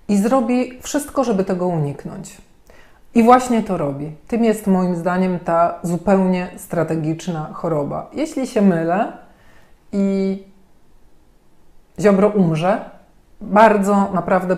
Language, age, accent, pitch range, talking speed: Polish, 40-59, native, 175-215 Hz, 105 wpm